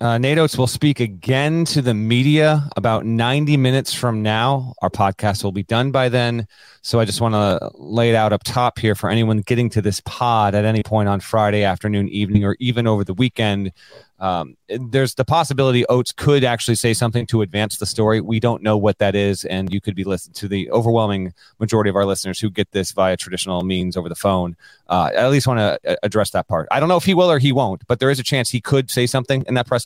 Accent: American